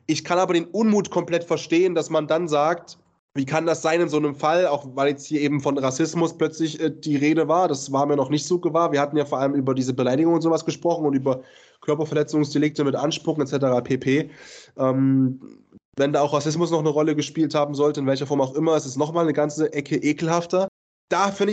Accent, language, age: German, German, 20-39